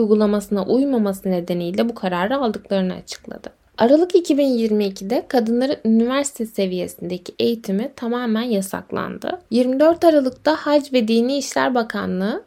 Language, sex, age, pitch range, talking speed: Turkish, female, 10-29, 215-275 Hz, 105 wpm